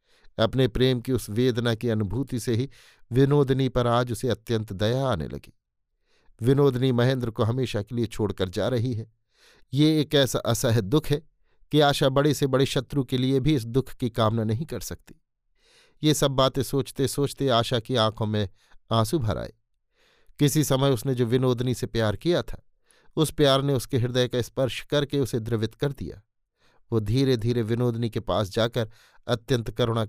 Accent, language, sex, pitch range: native, Hindi, male, 110-140 Hz